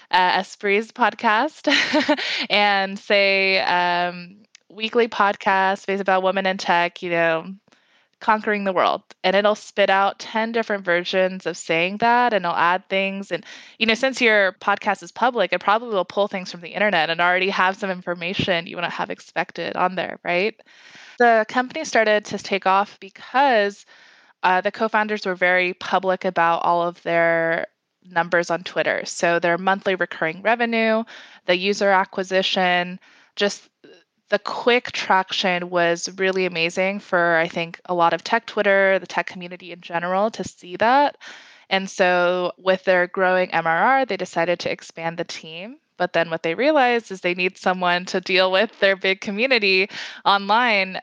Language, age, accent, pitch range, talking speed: English, 20-39, American, 175-210 Hz, 165 wpm